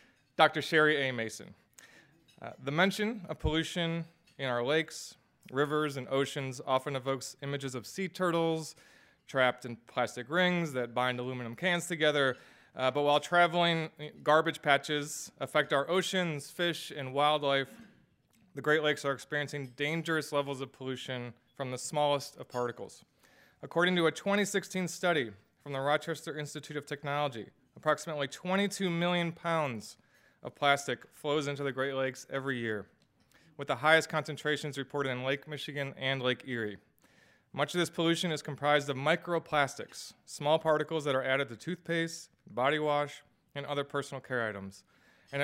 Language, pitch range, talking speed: English, 135-165 Hz, 150 wpm